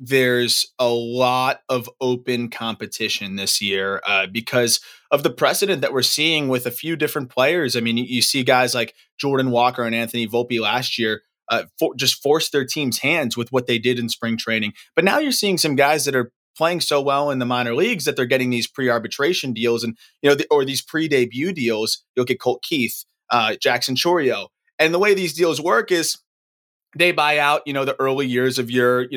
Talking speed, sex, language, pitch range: 210 wpm, male, English, 120-140 Hz